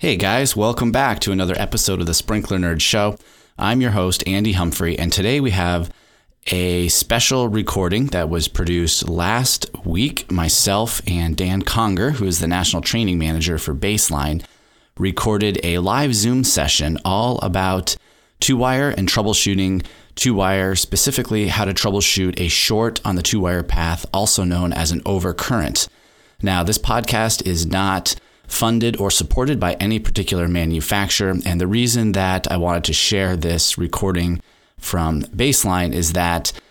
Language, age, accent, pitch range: English, 30-49, American, 85-100 Hz